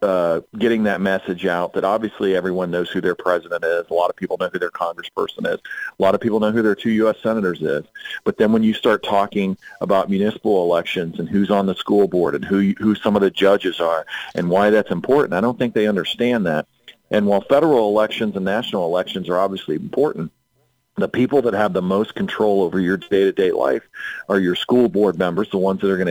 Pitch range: 95-115 Hz